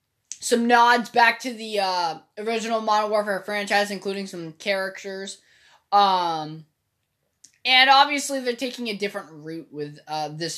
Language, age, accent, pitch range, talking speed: English, 20-39, American, 190-275 Hz, 135 wpm